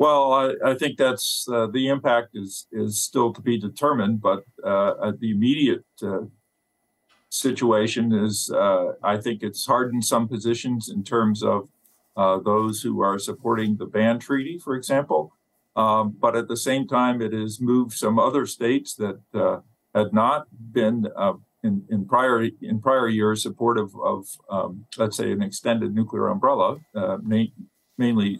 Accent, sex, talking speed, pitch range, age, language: American, male, 165 wpm, 105-125 Hz, 50-69, English